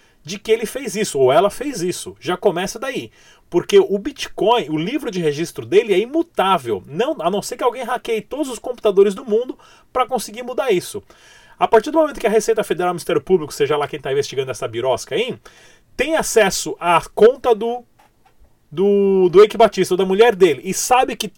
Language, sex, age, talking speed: Portuguese, male, 30-49, 200 wpm